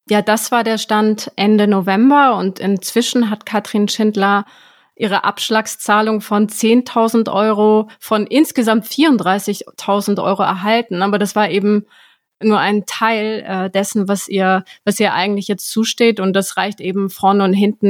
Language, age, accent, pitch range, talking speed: German, 30-49, German, 200-225 Hz, 150 wpm